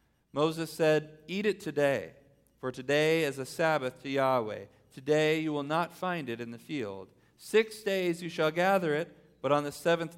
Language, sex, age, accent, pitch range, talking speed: English, male, 40-59, American, 125-165 Hz, 185 wpm